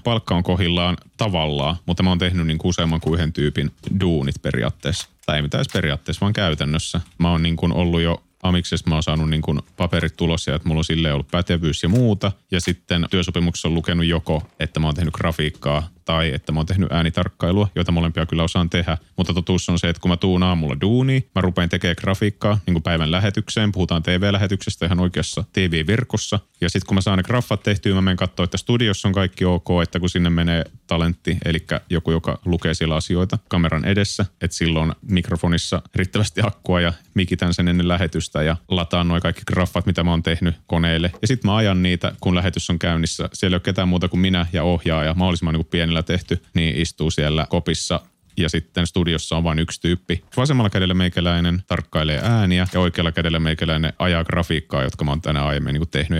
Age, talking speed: 30-49, 195 wpm